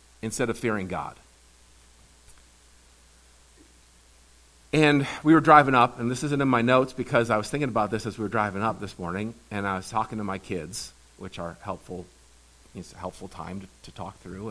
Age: 50-69